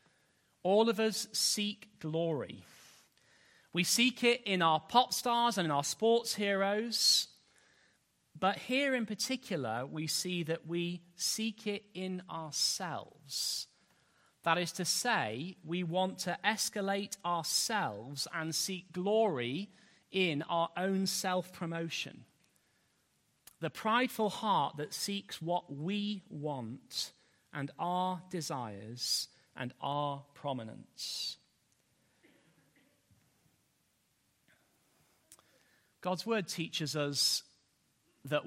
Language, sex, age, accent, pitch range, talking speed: English, male, 40-59, British, 150-200 Hz, 100 wpm